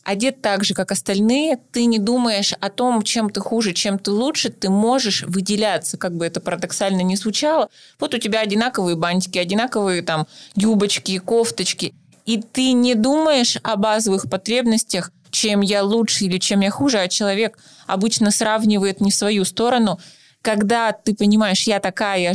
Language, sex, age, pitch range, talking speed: Russian, female, 20-39, 190-225 Hz, 165 wpm